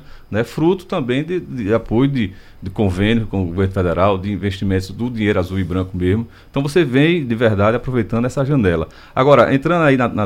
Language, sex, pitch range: Portuguese, male, 95-120 Hz